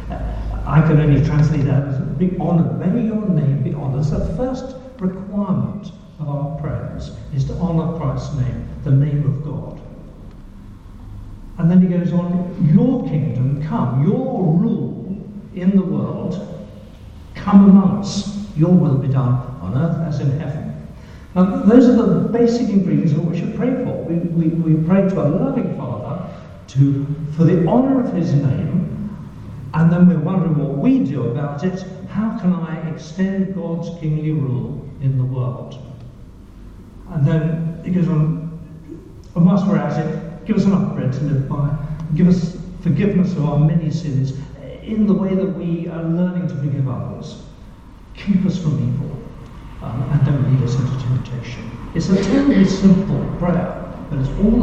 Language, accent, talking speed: English, British, 160 wpm